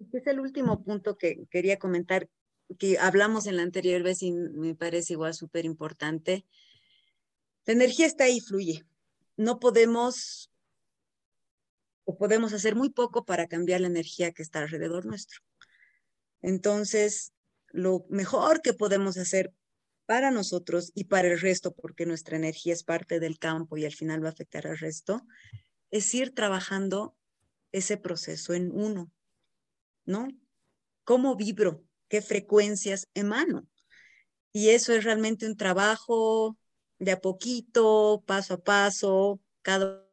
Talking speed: 140 wpm